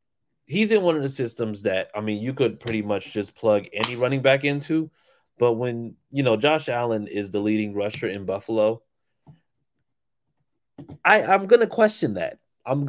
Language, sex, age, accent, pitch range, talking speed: English, male, 20-39, American, 105-145 Hz, 180 wpm